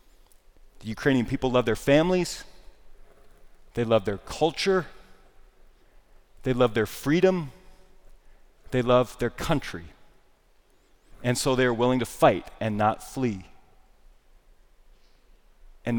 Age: 30-49